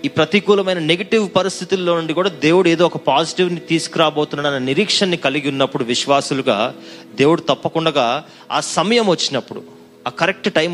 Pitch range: 125-170 Hz